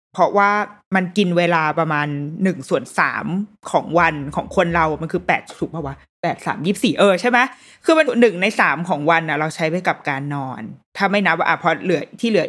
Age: 20-39